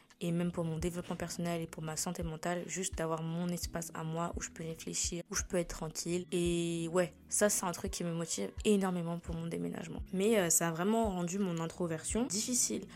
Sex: female